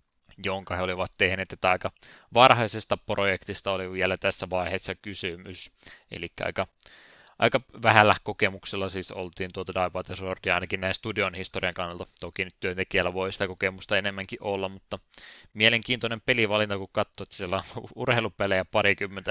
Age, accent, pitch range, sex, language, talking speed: 20-39, native, 95-105 Hz, male, Finnish, 145 wpm